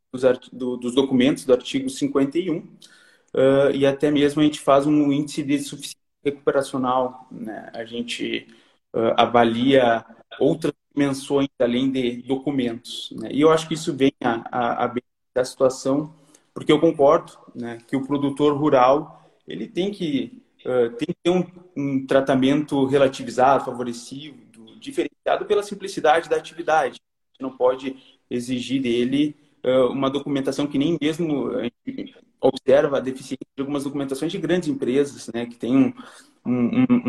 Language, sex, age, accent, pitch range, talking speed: Portuguese, male, 20-39, Brazilian, 125-150 Hz, 145 wpm